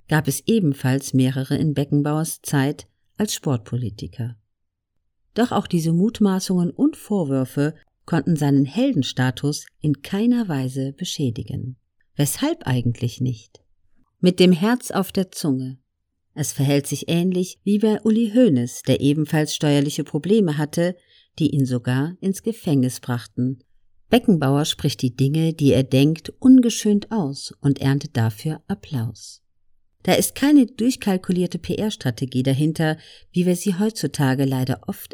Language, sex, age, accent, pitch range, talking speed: German, female, 50-69, German, 130-195 Hz, 130 wpm